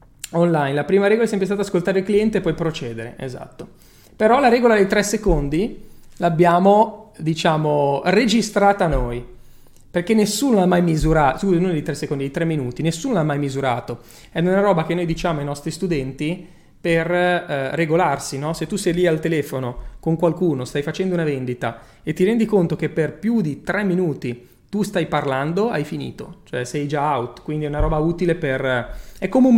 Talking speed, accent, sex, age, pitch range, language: 190 wpm, native, male, 30-49, 135-190 Hz, Italian